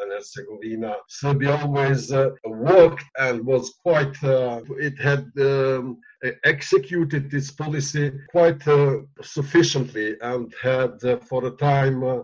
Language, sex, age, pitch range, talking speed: Turkish, male, 50-69, 130-150 Hz, 120 wpm